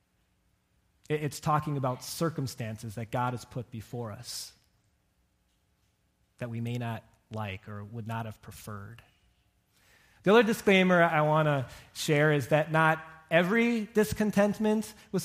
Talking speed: 130 wpm